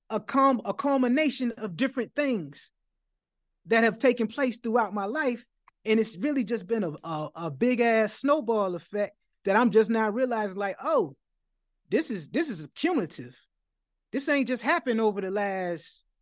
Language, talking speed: English, 165 wpm